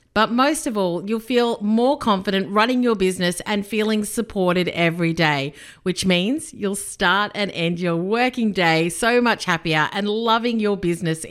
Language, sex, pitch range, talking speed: English, female, 150-200 Hz, 170 wpm